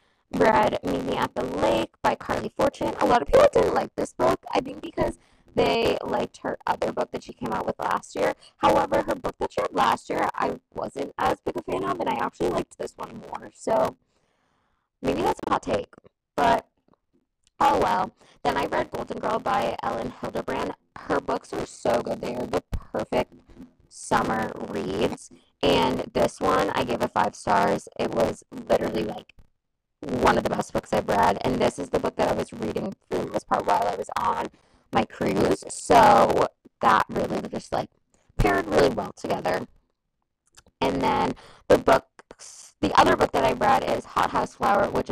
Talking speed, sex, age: 190 wpm, female, 20-39